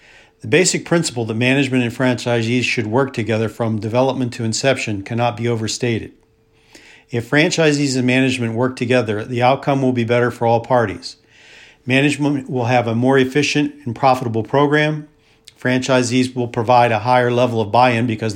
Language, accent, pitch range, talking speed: English, American, 115-135 Hz, 160 wpm